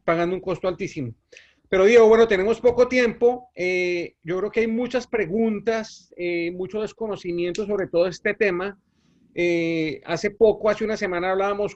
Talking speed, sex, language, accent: 160 wpm, male, Spanish, Colombian